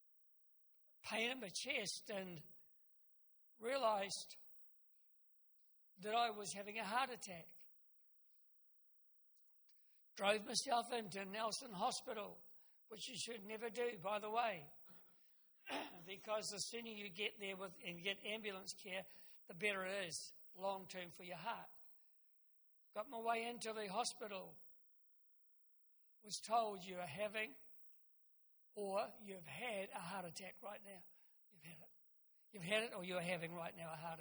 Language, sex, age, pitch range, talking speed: English, male, 60-79, 185-220 Hz, 135 wpm